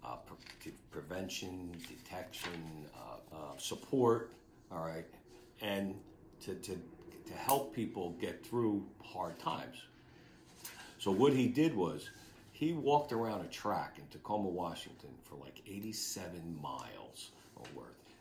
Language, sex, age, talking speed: English, male, 50-69, 120 wpm